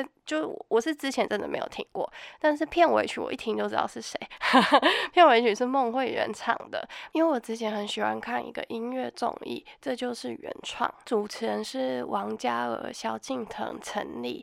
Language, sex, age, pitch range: Chinese, female, 20-39, 210-295 Hz